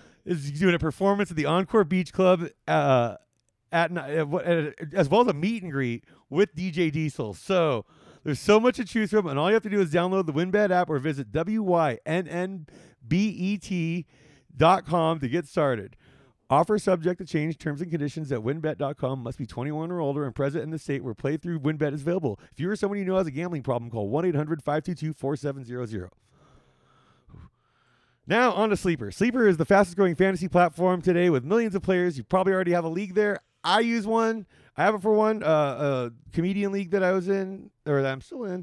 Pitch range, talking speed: 145-190 Hz, 195 wpm